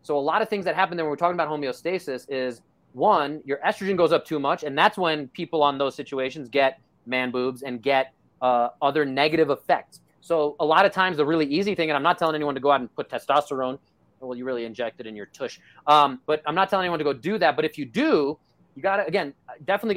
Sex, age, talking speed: male, 30-49, 250 wpm